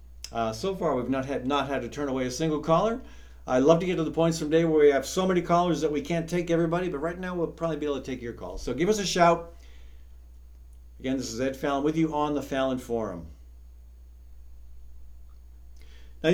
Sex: male